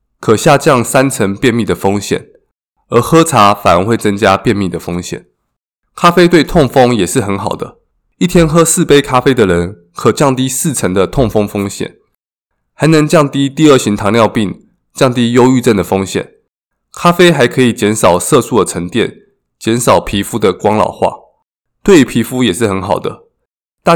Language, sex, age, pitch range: Chinese, male, 20-39, 100-140 Hz